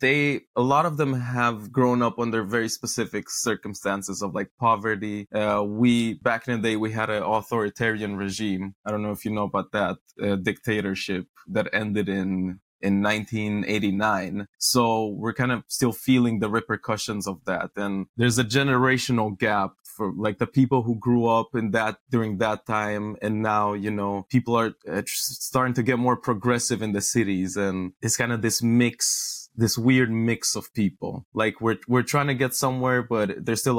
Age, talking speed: 20-39, 185 wpm